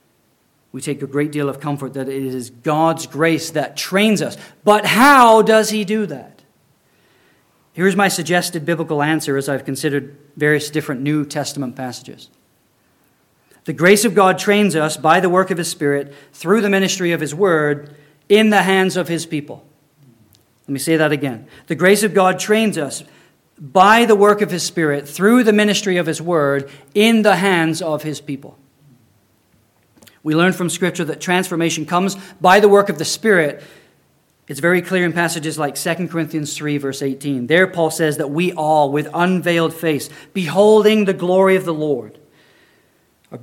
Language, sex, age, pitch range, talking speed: English, male, 40-59, 145-185 Hz, 175 wpm